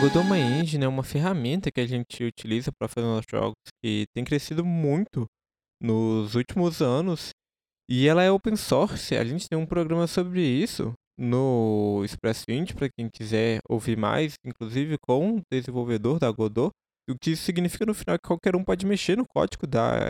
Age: 20-39